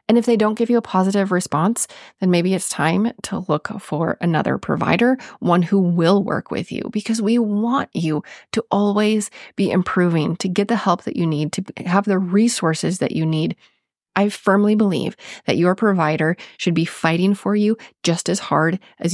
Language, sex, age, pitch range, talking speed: English, female, 30-49, 170-215 Hz, 190 wpm